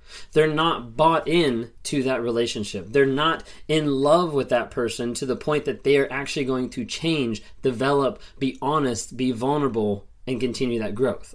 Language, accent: English, American